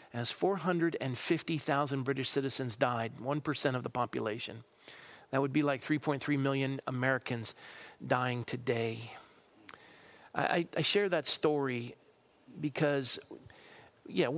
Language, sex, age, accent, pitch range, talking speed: English, male, 40-59, American, 130-155 Hz, 105 wpm